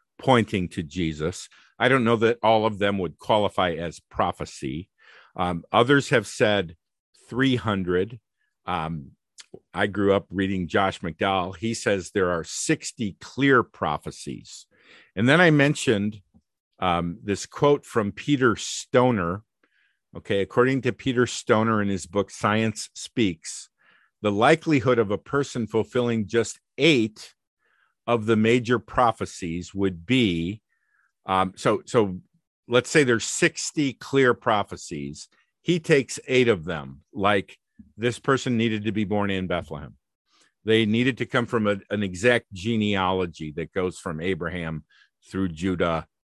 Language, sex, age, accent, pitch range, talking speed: English, male, 50-69, American, 95-125 Hz, 135 wpm